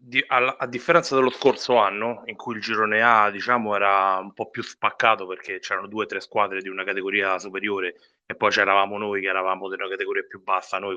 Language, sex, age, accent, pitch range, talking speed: Italian, male, 30-49, native, 95-120 Hz, 210 wpm